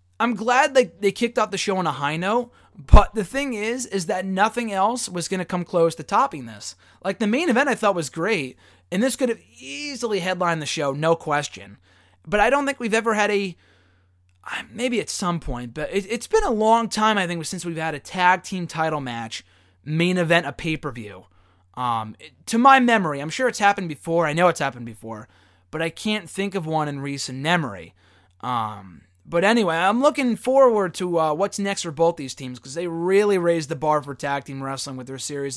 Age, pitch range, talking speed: 20-39, 135-200 Hz, 215 wpm